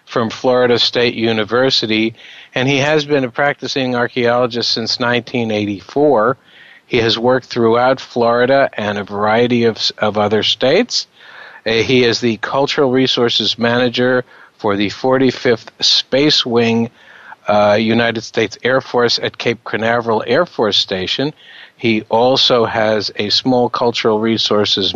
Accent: American